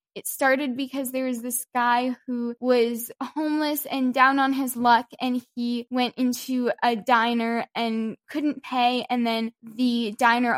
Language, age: English, 10-29